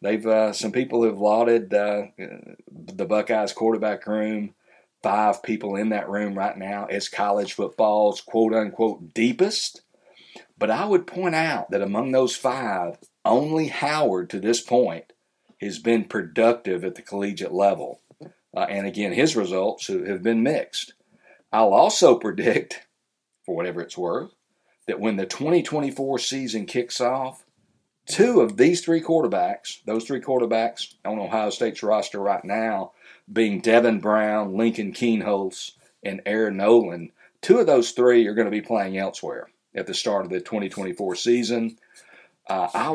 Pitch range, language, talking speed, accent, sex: 100-120 Hz, English, 150 wpm, American, male